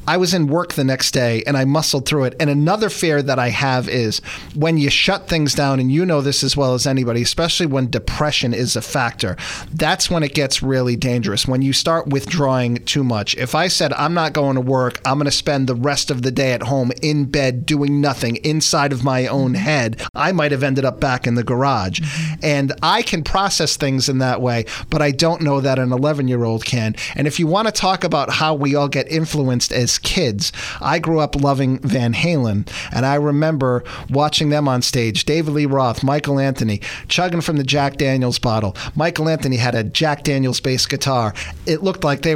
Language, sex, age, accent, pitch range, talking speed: English, male, 40-59, American, 130-160 Hz, 215 wpm